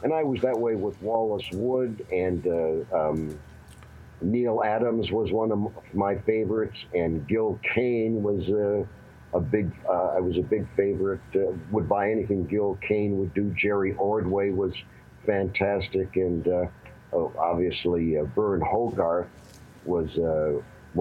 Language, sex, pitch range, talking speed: English, male, 85-105 Hz, 150 wpm